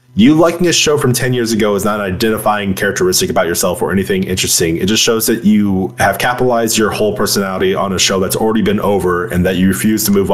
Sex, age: male, 20-39